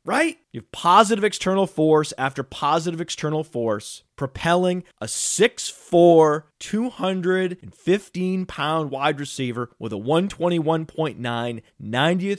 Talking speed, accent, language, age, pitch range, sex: 90 wpm, American, English, 30-49, 130-170 Hz, male